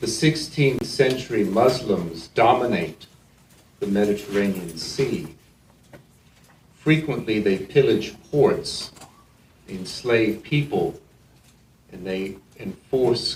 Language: English